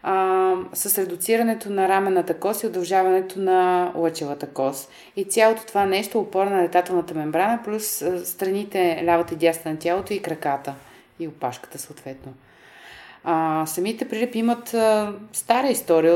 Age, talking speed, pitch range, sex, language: 30-49, 140 wpm, 165-205 Hz, female, Bulgarian